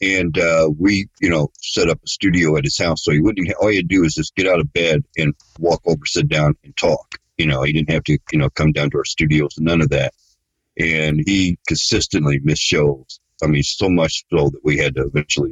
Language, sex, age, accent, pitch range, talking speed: English, male, 50-69, American, 75-100 Hz, 240 wpm